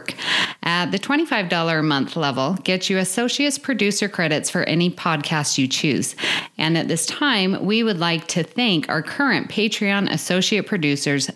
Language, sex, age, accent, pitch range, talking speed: English, female, 30-49, American, 150-205 Hz, 160 wpm